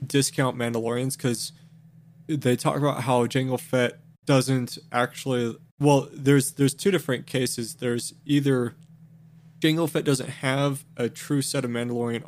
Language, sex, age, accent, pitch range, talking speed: English, male, 20-39, American, 120-155 Hz, 135 wpm